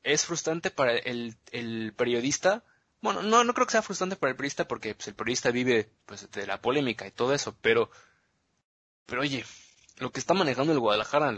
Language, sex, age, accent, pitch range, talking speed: Spanish, male, 20-39, Mexican, 110-135 Hz, 200 wpm